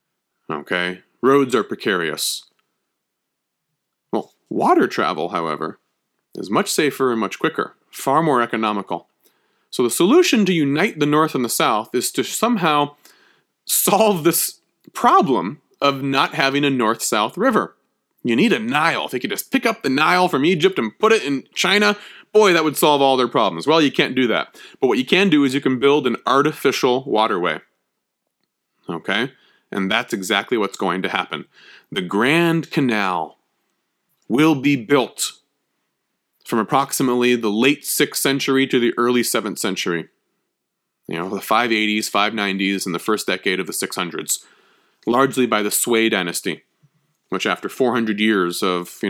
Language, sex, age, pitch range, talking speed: English, male, 30-49, 105-155 Hz, 160 wpm